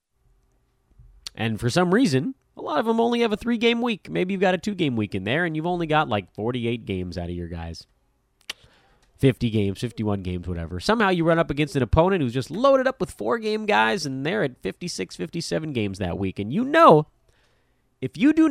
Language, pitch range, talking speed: English, 115-185 Hz, 210 wpm